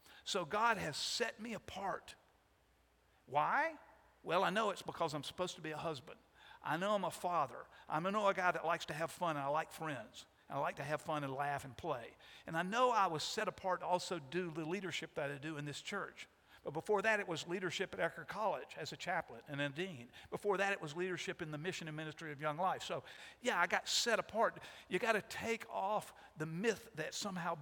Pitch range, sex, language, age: 155-195 Hz, male, English, 50-69